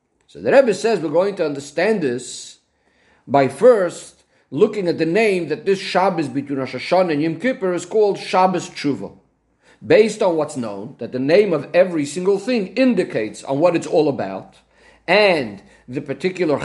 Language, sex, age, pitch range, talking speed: English, male, 50-69, 145-200 Hz, 175 wpm